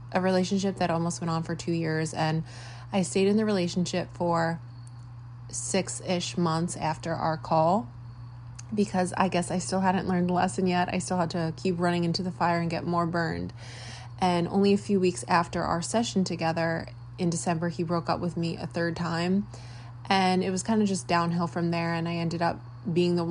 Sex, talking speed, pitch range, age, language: female, 200 wpm, 150-175 Hz, 20-39, English